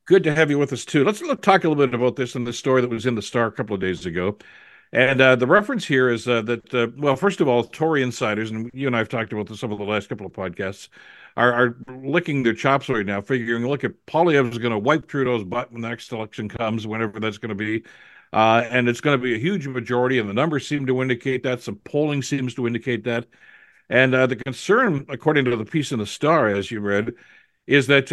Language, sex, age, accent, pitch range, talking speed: English, male, 60-79, American, 115-140 Hz, 260 wpm